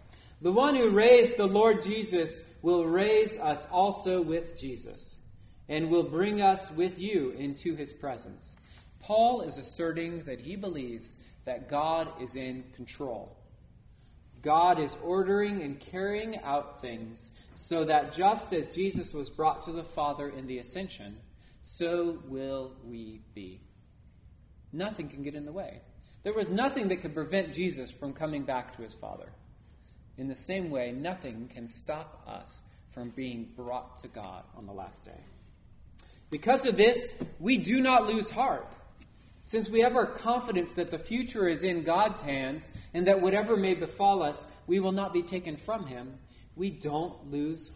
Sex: male